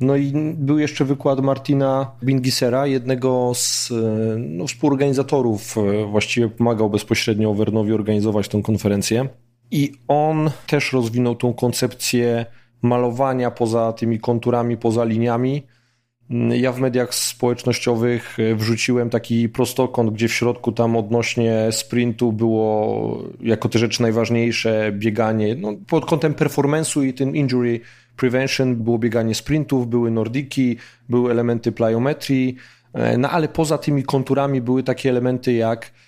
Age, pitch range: 30-49, 115-140 Hz